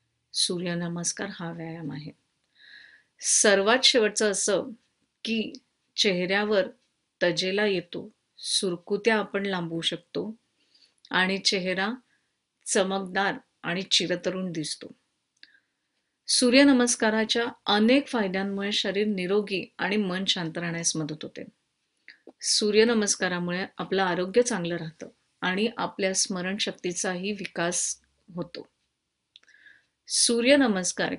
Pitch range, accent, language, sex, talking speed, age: 180-220 Hz, native, Marathi, female, 85 wpm, 30-49